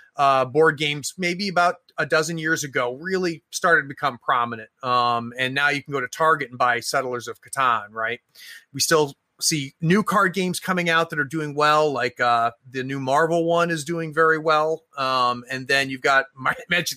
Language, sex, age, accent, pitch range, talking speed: English, male, 30-49, American, 135-180 Hz, 200 wpm